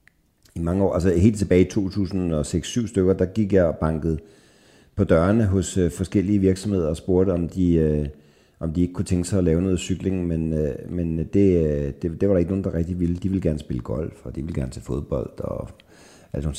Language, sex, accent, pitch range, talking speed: Danish, male, native, 80-100 Hz, 215 wpm